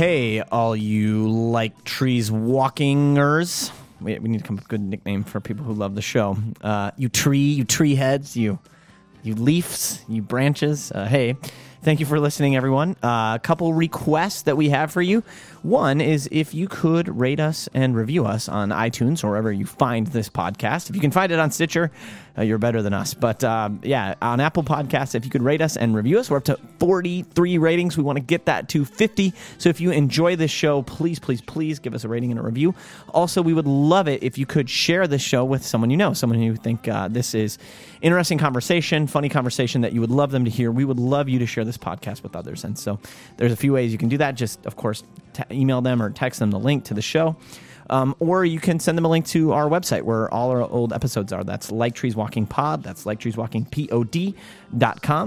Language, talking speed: English, 230 wpm